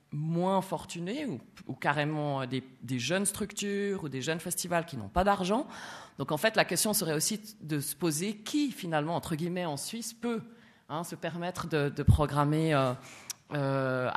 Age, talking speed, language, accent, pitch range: 30-49, 180 wpm, French, French, 130-175 Hz